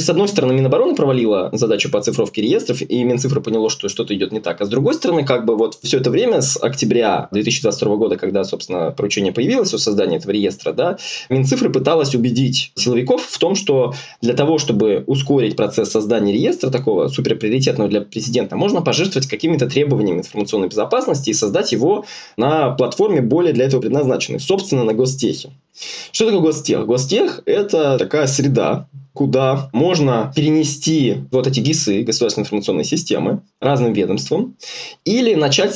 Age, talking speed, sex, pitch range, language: 20-39, 165 wpm, male, 115-155 Hz, Russian